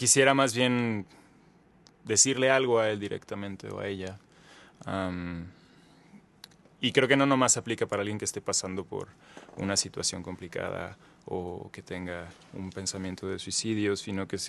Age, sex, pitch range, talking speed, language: 20-39, male, 90-130 Hz, 150 wpm, Spanish